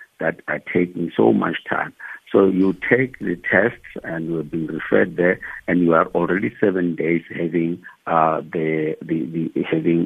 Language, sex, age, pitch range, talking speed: English, male, 60-79, 80-90 Hz, 175 wpm